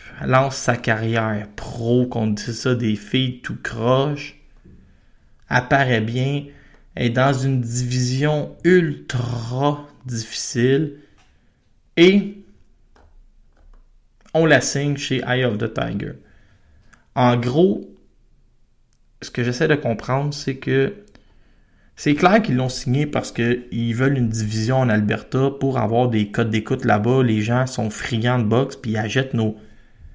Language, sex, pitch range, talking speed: French, male, 115-135 Hz, 130 wpm